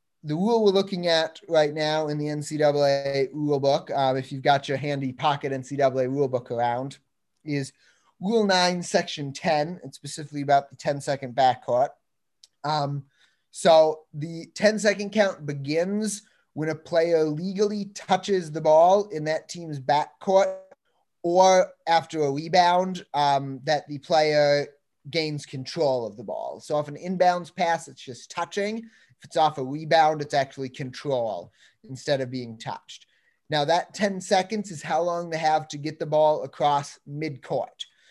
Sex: male